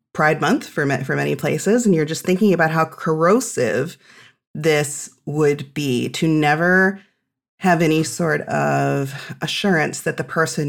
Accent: American